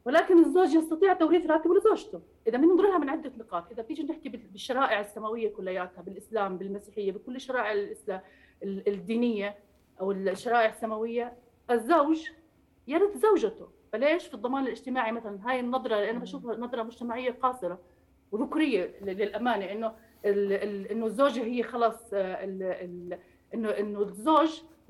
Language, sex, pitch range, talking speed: Arabic, female, 205-275 Hz, 125 wpm